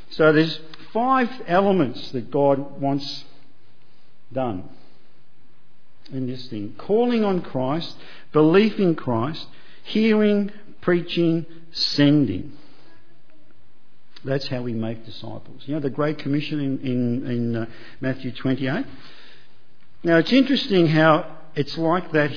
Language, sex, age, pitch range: English, male, 50-69, 125-170 Hz